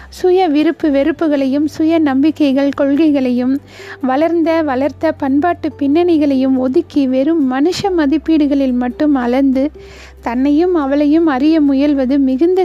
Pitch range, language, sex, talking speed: 260-300 Hz, Tamil, female, 100 wpm